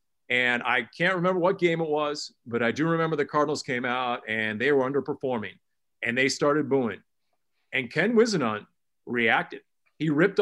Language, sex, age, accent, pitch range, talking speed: English, male, 40-59, American, 135-185 Hz, 175 wpm